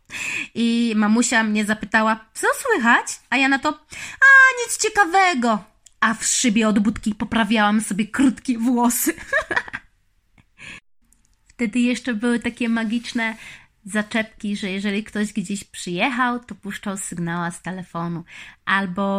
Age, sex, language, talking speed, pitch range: 20-39, female, Polish, 120 wpm, 210-260 Hz